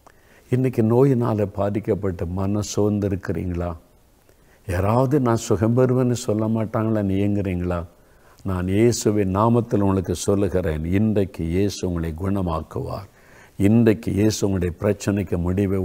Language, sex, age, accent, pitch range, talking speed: Tamil, male, 50-69, native, 90-110 Hz, 95 wpm